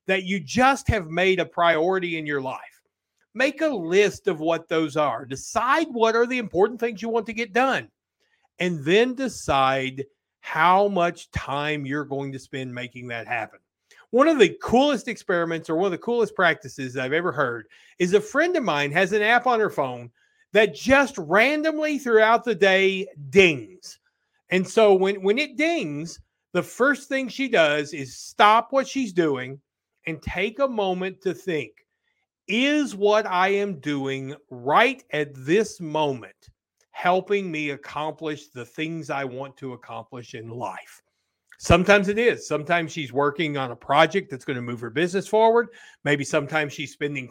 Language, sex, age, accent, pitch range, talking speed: English, male, 40-59, American, 145-235 Hz, 170 wpm